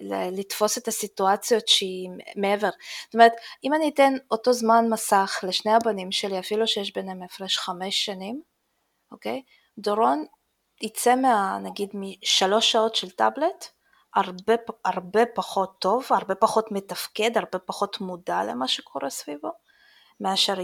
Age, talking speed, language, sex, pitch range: 20-39, 130 wpm, Hebrew, female, 180-220 Hz